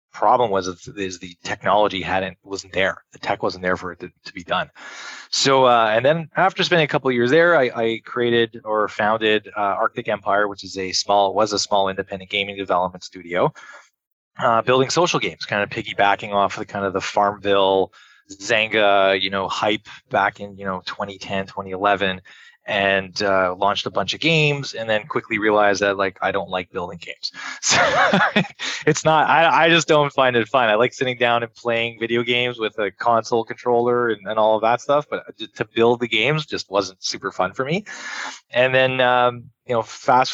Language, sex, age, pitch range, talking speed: English, male, 20-39, 100-125 Hz, 200 wpm